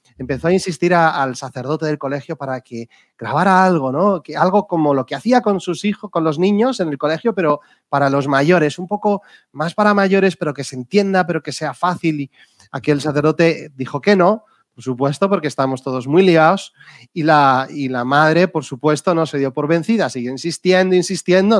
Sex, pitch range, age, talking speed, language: male, 135-170 Hz, 30-49, 205 wpm, Spanish